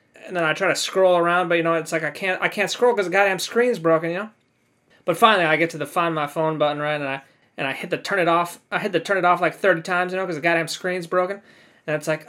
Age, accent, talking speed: 20-39, American, 310 wpm